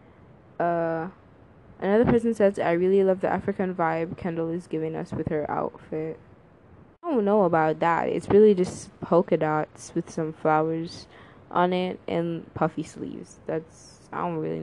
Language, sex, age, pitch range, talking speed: English, female, 10-29, 165-200 Hz, 160 wpm